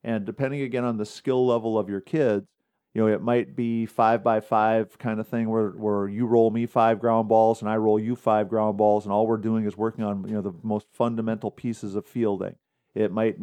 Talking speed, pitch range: 235 wpm, 110-120 Hz